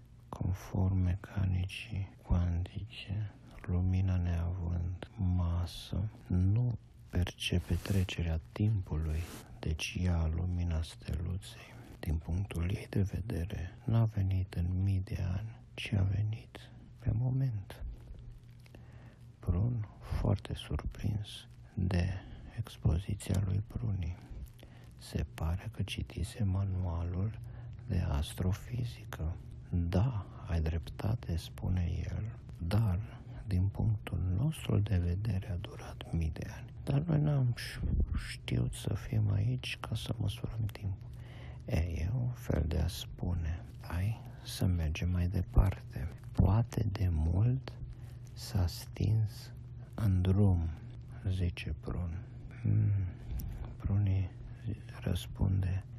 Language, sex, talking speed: Romanian, male, 100 wpm